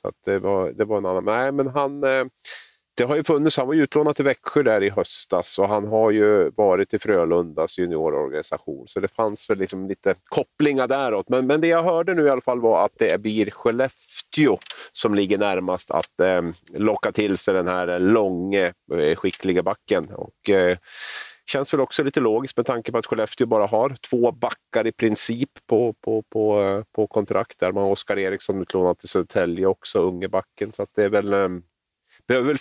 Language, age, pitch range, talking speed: Swedish, 30-49, 95-125 Hz, 180 wpm